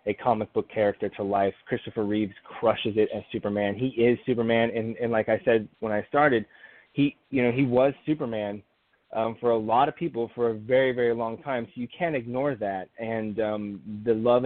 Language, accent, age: English, American, 20-39